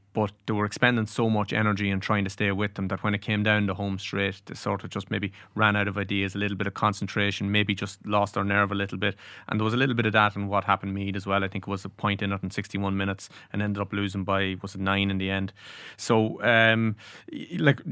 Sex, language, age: male, English, 20-39